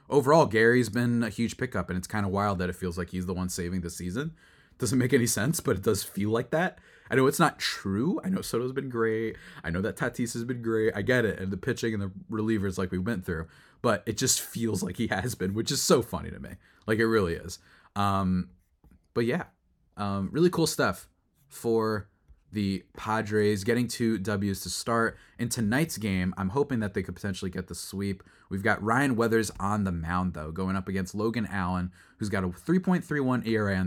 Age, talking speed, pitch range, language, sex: 20-39, 220 wpm, 95-130 Hz, English, male